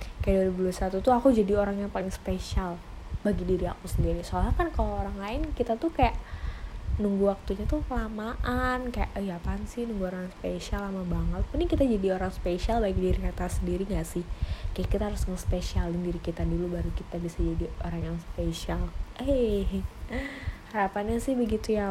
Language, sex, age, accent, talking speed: Indonesian, female, 20-39, native, 185 wpm